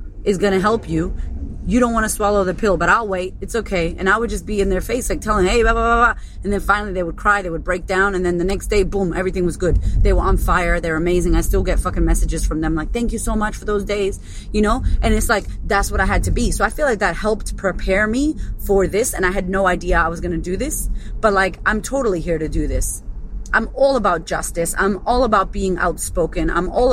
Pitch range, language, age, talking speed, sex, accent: 175-210 Hz, English, 30-49, 270 wpm, female, American